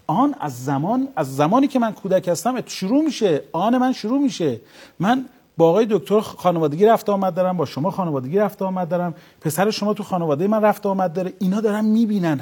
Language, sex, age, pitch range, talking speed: Persian, male, 40-59, 145-215 Hz, 205 wpm